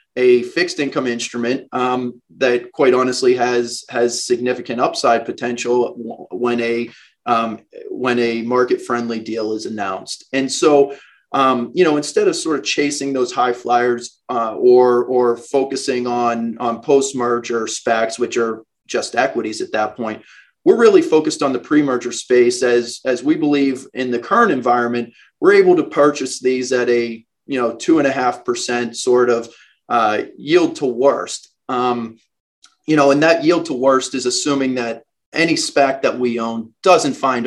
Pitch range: 120-145 Hz